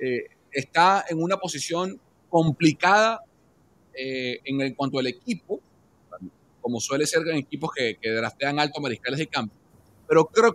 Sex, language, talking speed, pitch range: male, Spanish, 155 wpm, 140-185 Hz